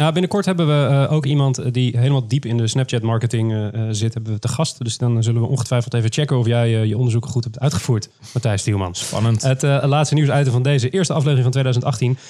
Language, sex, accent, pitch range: Dutch, male, Dutch, 120-150 Hz